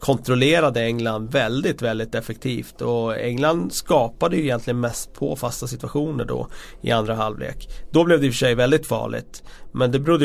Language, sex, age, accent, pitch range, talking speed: Swedish, male, 30-49, native, 115-145 Hz, 170 wpm